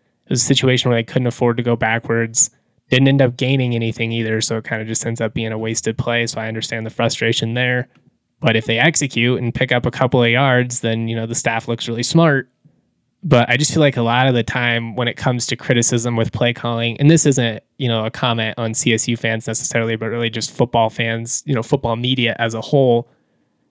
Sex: male